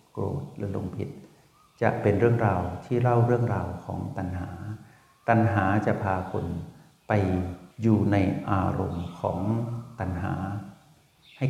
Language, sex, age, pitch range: Thai, male, 60-79, 95-115 Hz